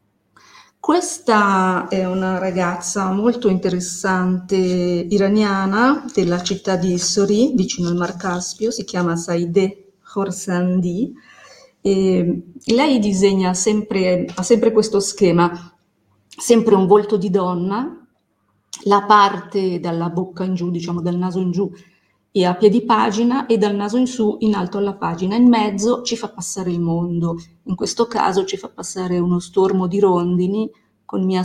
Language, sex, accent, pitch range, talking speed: Italian, female, native, 180-210 Hz, 140 wpm